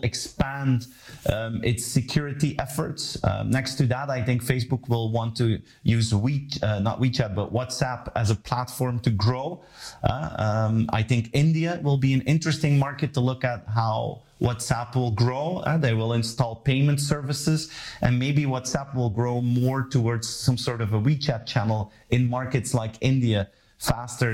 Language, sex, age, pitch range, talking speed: English, male, 30-49, 115-135 Hz, 165 wpm